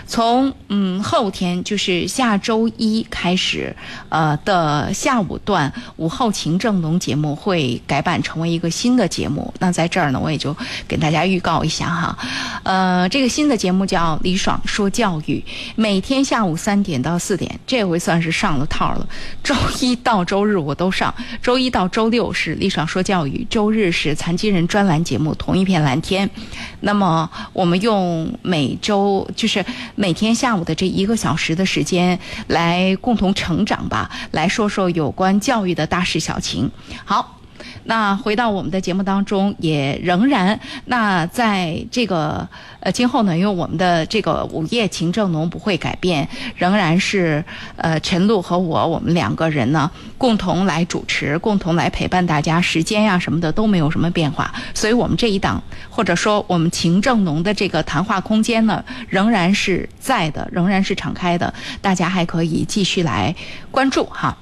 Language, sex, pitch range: Chinese, female, 170-215 Hz